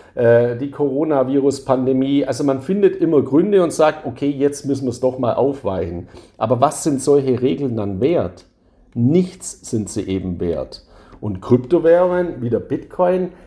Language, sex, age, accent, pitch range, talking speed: German, male, 50-69, German, 115-155 Hz, 150 wpm